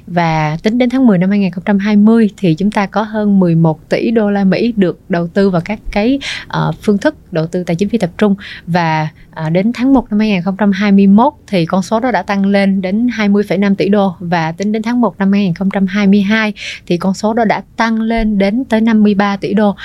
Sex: female